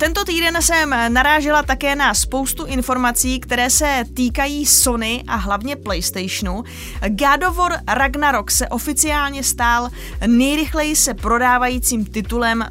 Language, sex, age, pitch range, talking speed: Czech, female, 20-39, 205-260 Hz, 115 wpm